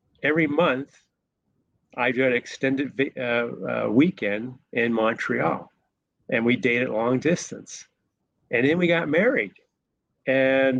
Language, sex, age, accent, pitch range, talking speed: English, male, 40-59, American, 120-145 Hz, 120 wpm